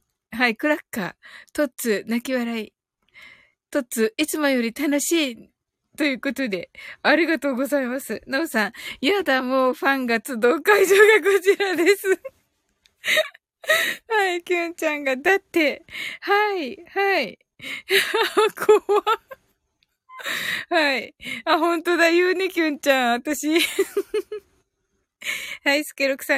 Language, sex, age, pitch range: Japanese, female, 20-39, 260-385 Hz